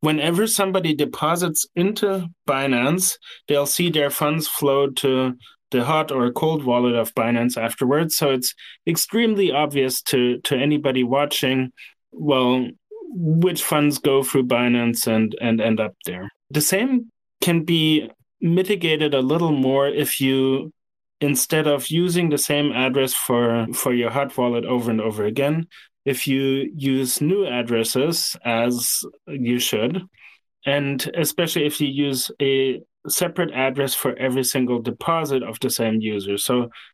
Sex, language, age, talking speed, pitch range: male, English, 30-49, 145 wpm, 125-155 Hz